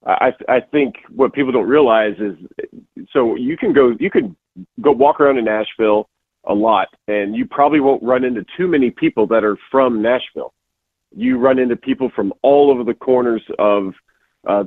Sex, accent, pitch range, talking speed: male, American, 105-135 Hz, 185 wpm